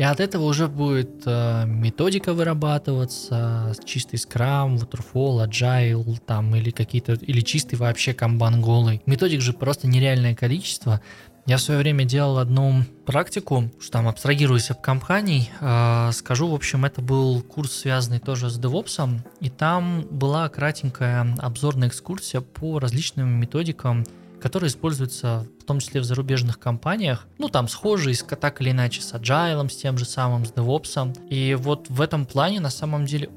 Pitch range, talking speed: 120-150 Hz, 160 wpm